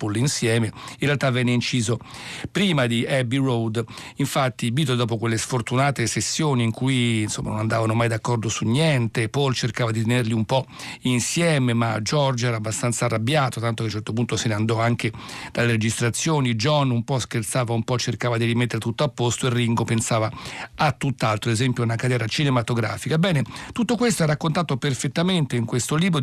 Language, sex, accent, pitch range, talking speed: Italian, male, native, 115-145 Hz, 180 wpm